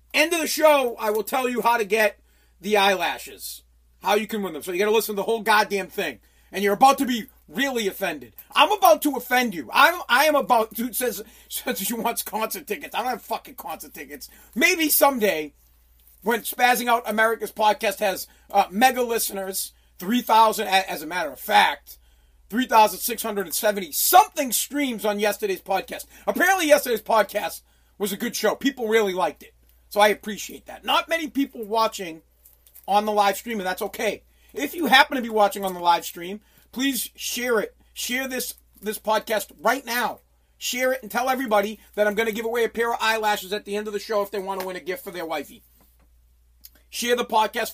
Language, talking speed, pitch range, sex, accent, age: English, 205 wpm, 195-240 Hz, male, American, 40-59